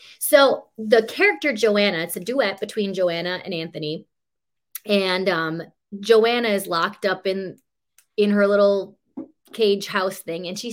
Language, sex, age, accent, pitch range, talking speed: English, female, 20-39, American, 185-235 Hz, 145 wpm